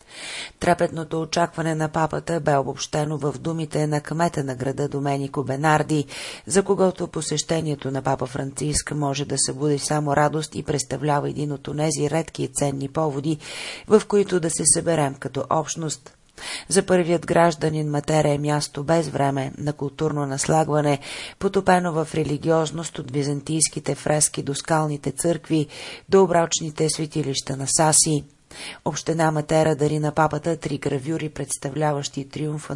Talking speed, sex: 135 wpm, female